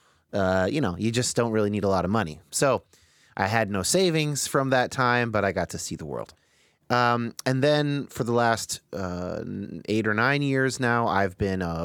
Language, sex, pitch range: English, male, 100-135 Hz